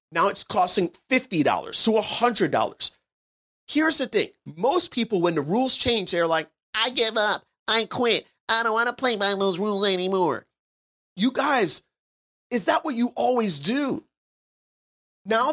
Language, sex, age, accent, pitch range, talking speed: English, male, 30-49, American, 155-240 Hz, 155 wpm